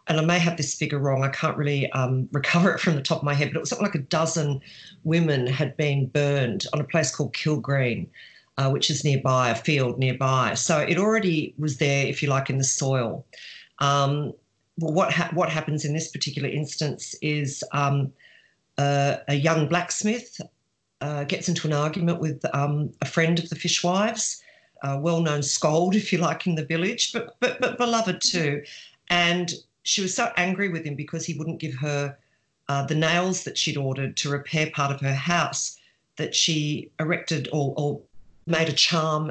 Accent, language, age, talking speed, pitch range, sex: Australian, English, 50-69, 195 wpm, 140-165 Hz, female